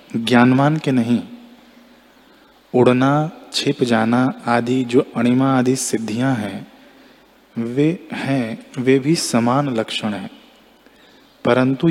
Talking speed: 100 wpm